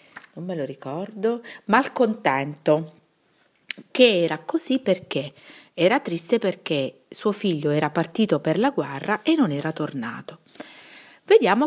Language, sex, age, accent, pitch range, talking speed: Italian, female, 40-59, native, 150-250 Hz, 125 wpm